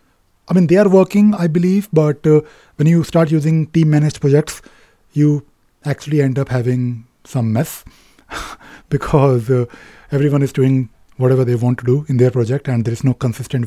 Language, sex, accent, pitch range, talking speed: English, male, Indian, 115-150 Hz, 175 wpm